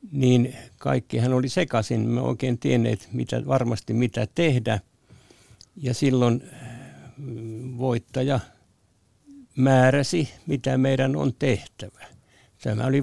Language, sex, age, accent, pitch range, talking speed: Finnish, male, 60-79, native, 115-135 Hz, 95 wpm